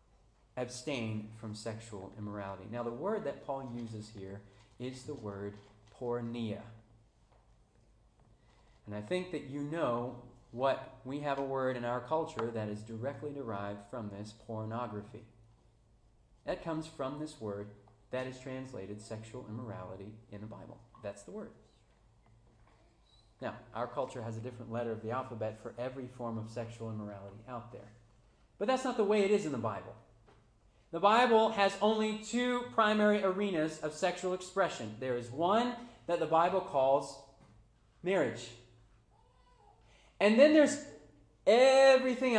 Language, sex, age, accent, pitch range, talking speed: English, male, 40-59, American, 110-140 Hz, 145 wpm